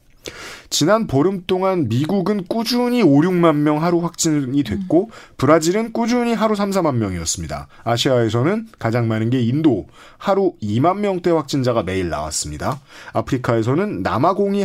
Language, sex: Korean, male